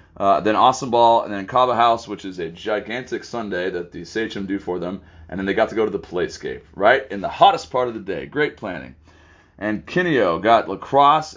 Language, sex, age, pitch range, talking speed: English, male, 30-49, 85-115 Hz, 220 wpm